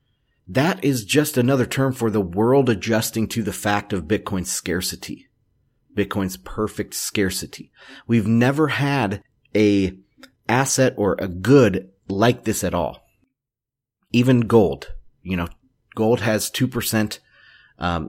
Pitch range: 95-115 Hz